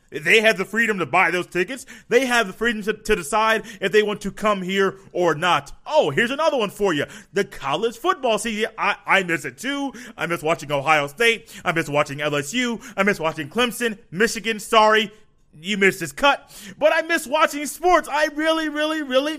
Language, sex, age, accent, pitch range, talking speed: English, male, 30-49, American, 195-260 Hz, 205 wpm